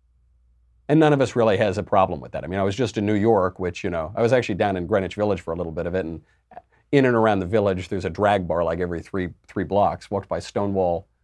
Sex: male